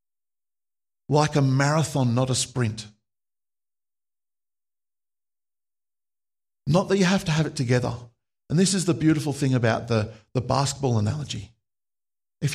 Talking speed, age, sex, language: 125 wpm, 50-69, male, English